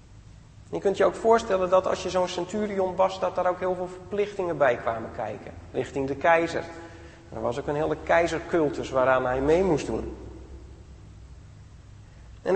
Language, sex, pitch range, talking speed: Dutch, male, 125-200 Hz, 165 wpm